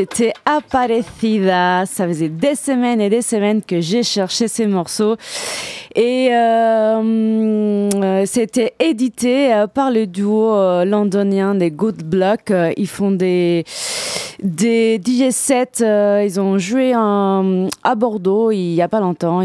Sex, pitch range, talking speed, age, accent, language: female, 185-230 Hz, 125 wpm, 20-39, French, French